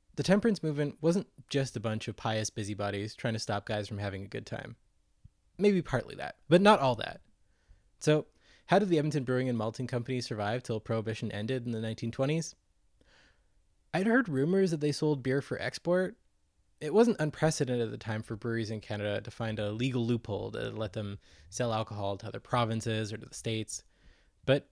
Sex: male